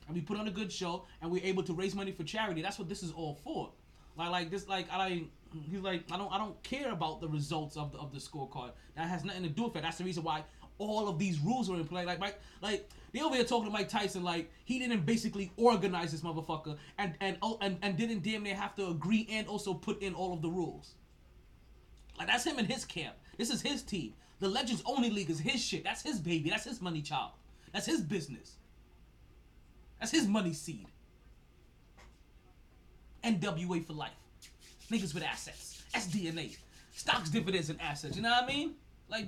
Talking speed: 220 wpm